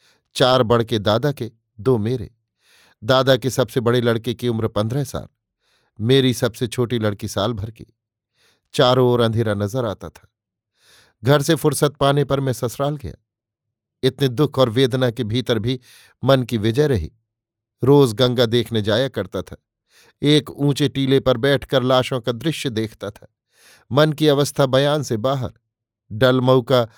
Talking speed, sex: 155 wpm, male